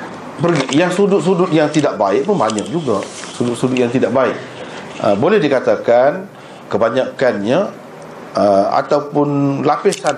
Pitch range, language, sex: 125-170 Hz, Malay, male